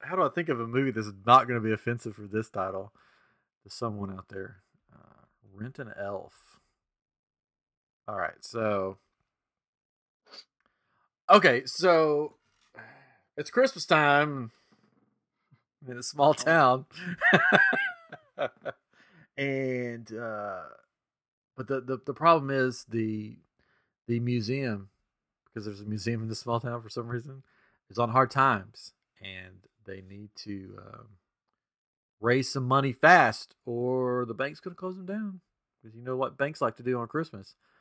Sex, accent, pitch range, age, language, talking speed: male, American, 105-135 Hz, 30-49, English, 140 wpm